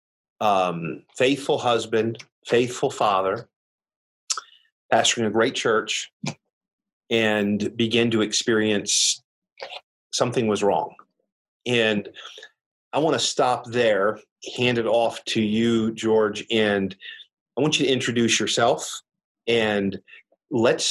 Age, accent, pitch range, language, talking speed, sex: 40-59, American, 105-120 Hz, English, 105 wpm, male